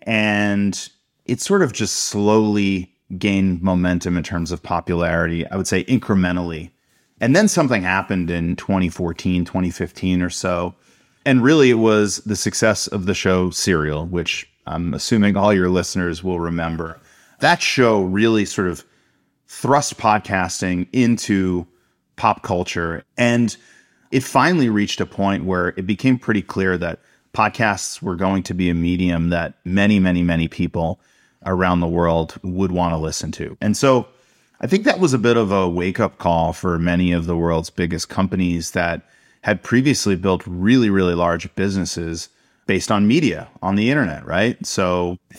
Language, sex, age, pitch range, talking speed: English, male, 30-49, 85-105 Hz, 160 wpm